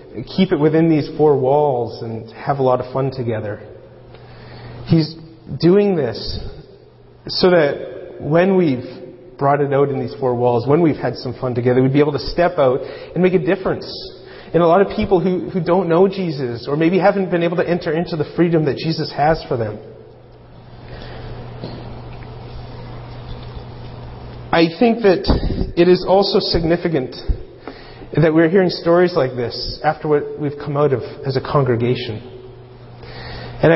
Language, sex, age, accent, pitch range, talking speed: English, male, 30-49, American, 125-175 Hz, 160 wpm